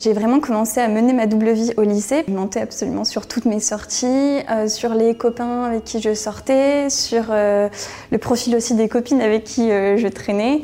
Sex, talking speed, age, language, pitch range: female, 210 wpm, 20-39, French, 210-240 Hz